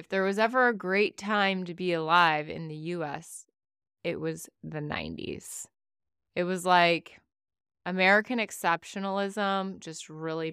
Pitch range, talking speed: 160-205 Hz, 135 wpm